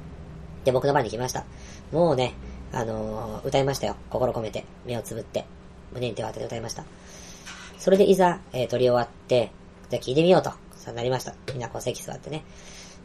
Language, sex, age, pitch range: Japanese, male, 20-39, 110-150 Hz